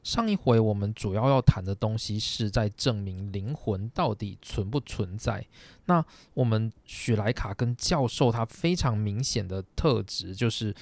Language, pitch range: Chinese, 105-145 Hz